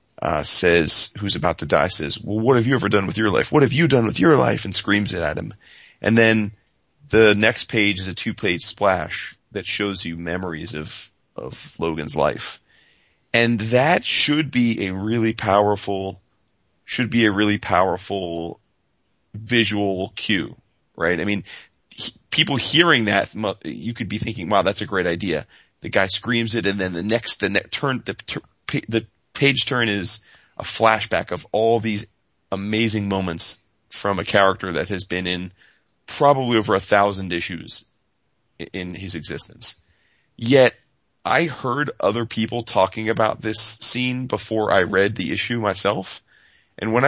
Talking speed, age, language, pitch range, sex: 165 wpm, 30-49, English, 95-115 Hz, male